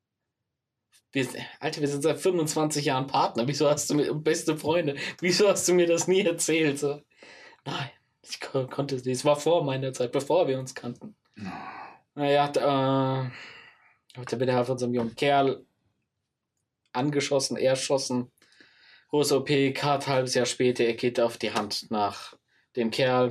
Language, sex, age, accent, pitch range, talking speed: German, male, 20-39, German, 125-150 Hz, 155 wpm